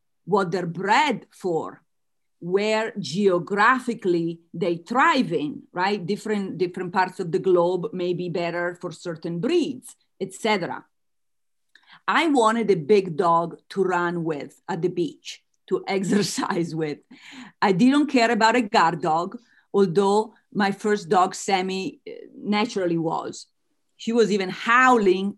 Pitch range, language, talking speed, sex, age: 180-235 Hz, Italian, 130 wpm, female, 40-59